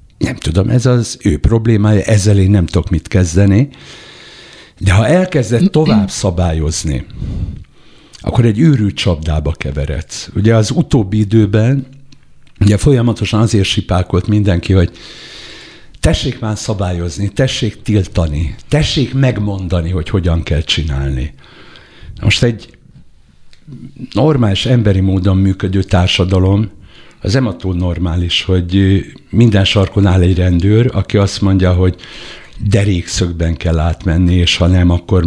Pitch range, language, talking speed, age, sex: 90-115 Hz, Hungarian, 120 wpm, 60-79, male